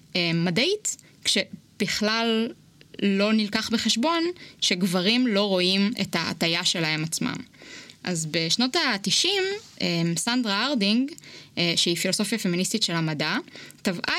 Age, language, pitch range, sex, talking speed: 20-39, Hebrew, 180-255 Hz, female, 95 wpm